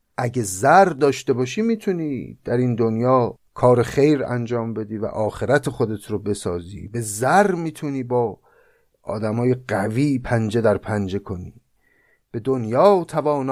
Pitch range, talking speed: 110-150 Hz, 135 wpm